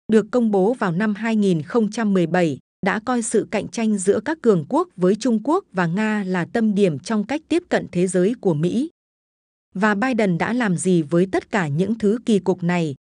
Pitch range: 185-230 Hz